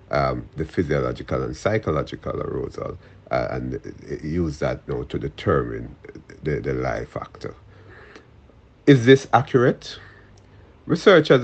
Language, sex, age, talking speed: English, male, 50-69, 120 wpm